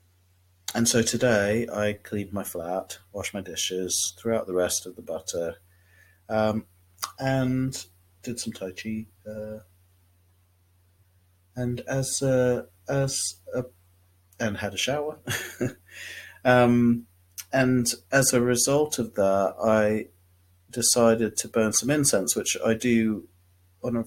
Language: English